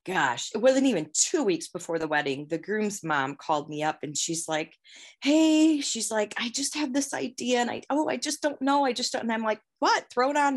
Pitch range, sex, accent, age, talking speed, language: 165-240 Hz, female, American, 30-49, 245 wpm, English